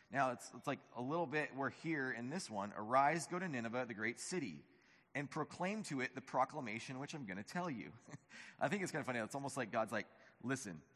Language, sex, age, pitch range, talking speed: English, male, 30-49, 130-185 Hz, 235 wpm